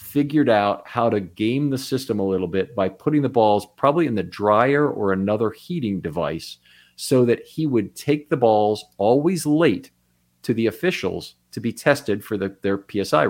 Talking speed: 185 wpm